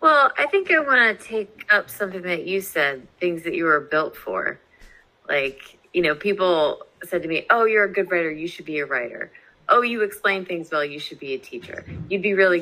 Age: 30-49